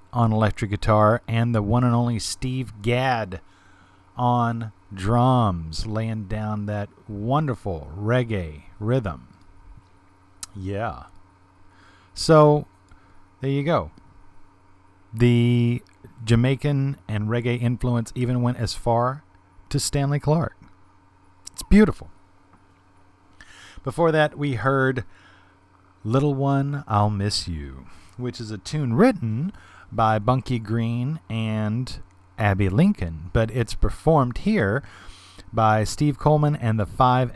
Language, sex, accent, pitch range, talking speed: English, male, American, 95-125 Hz, 110 wpm